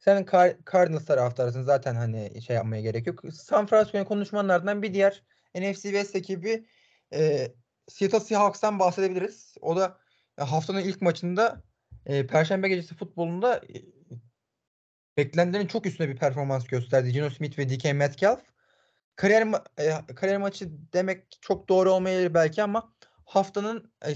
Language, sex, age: Turkish, male, 30-49